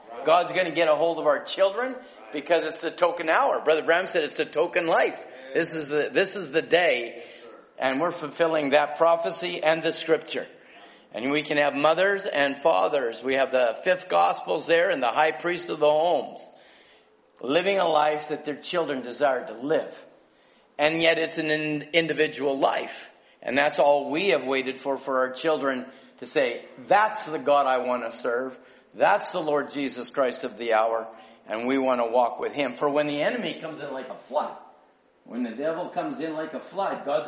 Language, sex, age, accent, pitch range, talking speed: English, male, 50-69, American, 135-170 Hz, 200 wpm